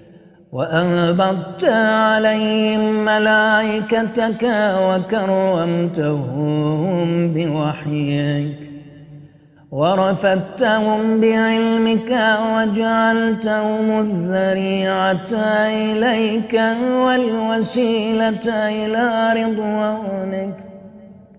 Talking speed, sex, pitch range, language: 35 wpm, male, 190-225 Hz, Arabic